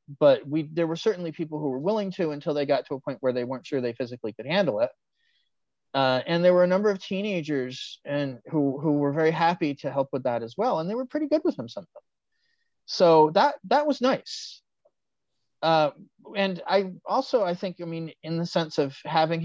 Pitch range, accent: 135-170 Hz, American